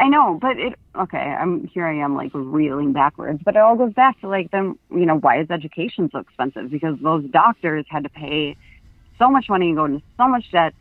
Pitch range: 155-195 Hz